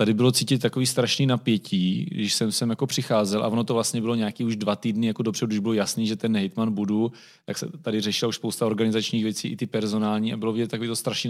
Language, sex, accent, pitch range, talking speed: Czech, male, native, 110-130 Hz, 240 wpm